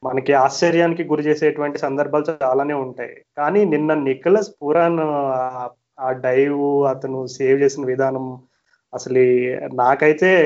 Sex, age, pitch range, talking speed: male, 30-49, 135-160 Hz, 110 wpm